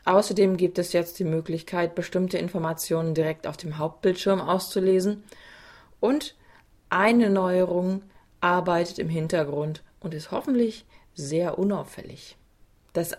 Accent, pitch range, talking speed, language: German, 170-195 Hz, 115 wpm, German